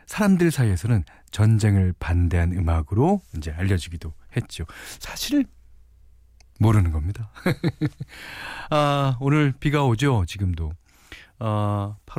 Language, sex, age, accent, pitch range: Korean, male, 40-59, native, 90-145 Hz